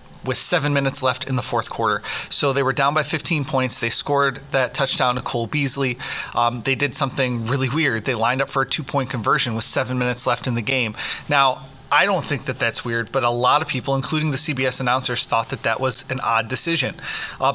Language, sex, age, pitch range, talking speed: English, male, 30-49, 125-150 Hz, 225 wpm